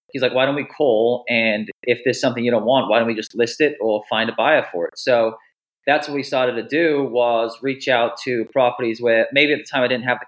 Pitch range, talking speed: 115-135 Hz, 270 wpm